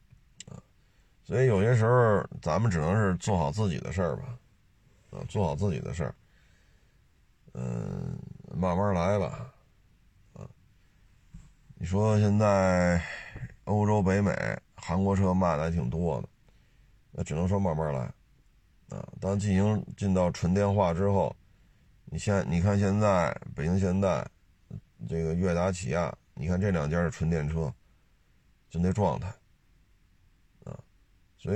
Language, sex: Chinese, male